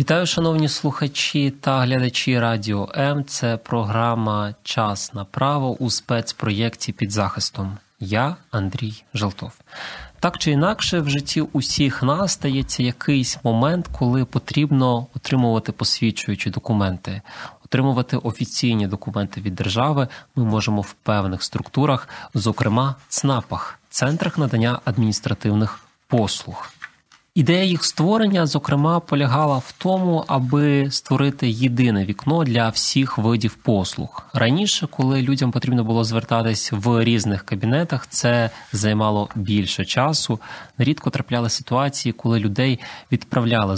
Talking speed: 115 wpm